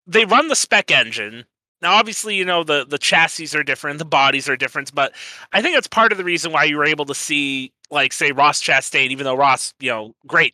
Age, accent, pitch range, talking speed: 30-49, American, 130-190 Hz, 240 wpm